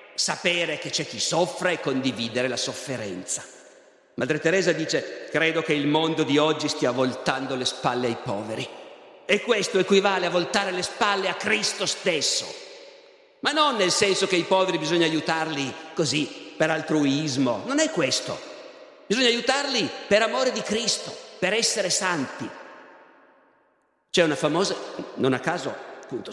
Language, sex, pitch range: Italian, male, 160-220 Hz